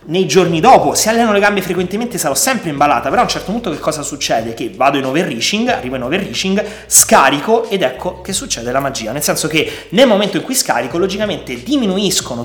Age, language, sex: 30-49, Italian, male